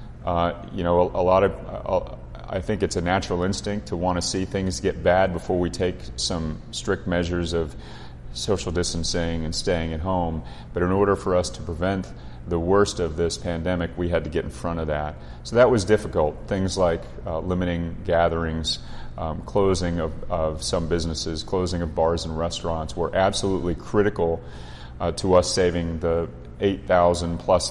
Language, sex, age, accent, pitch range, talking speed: English, male, 30-49, American, 80-90 Hz, 180 wpm